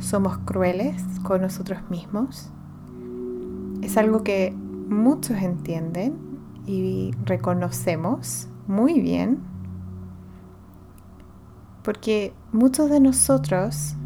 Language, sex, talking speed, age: English, female, 75 wpm, 20-39